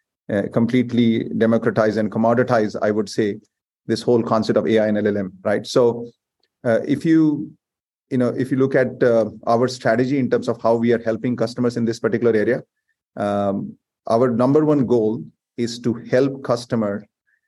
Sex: male